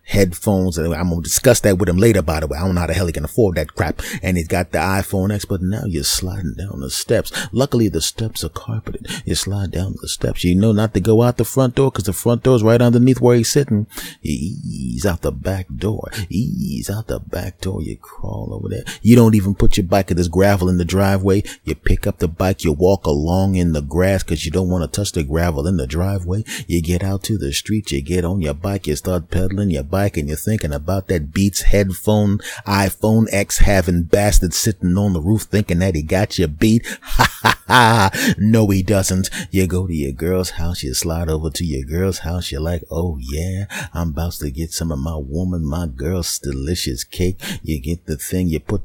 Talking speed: 230 wpm